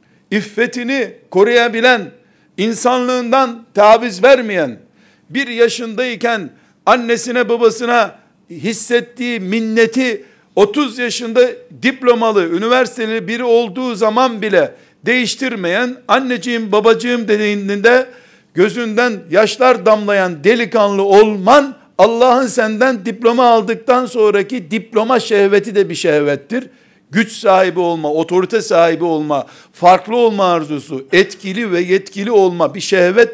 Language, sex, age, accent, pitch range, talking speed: Turkish, male, 60-79, native, 205-245 Hz, 95 wpm